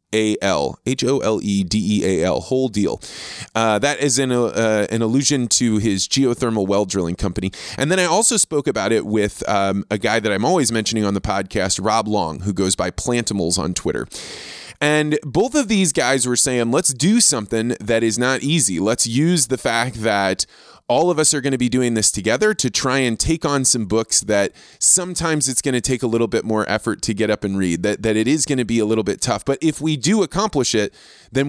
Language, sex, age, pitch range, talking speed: English, male, 20-39, 105-145 Hz, 210 wpm